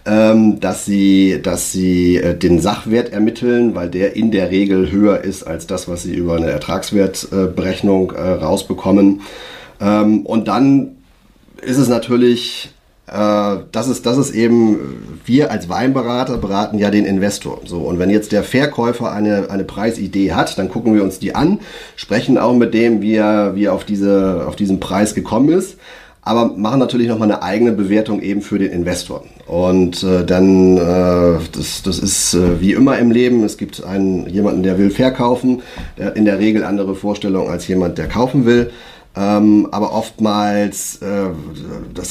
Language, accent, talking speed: German, German, 160 wpm